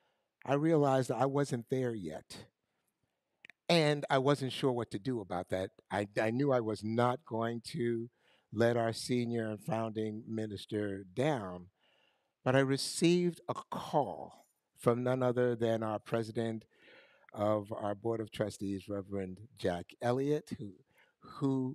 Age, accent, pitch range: 60-79, American, 110-150 Hz